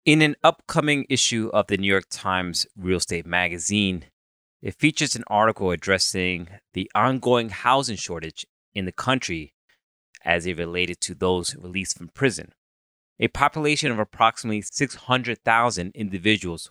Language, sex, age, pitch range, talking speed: English, male, 30-49, 95-125 Hz, 135 wpm